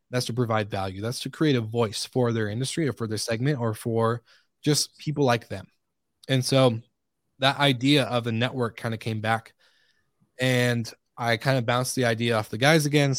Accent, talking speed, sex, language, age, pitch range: American, 205 wpm, male, English, 20-39, 115-135 Hz